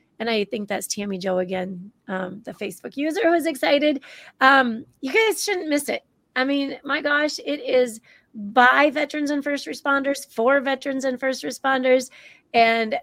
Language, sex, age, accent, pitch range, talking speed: English, female, 30-49, American, 230-285 Hz, 170 wpm